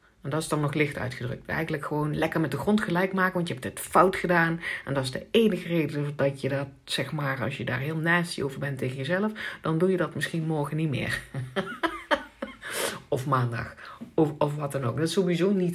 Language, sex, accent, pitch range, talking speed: Dutch, female, Dutch, 135-180 Hz, 230 wpm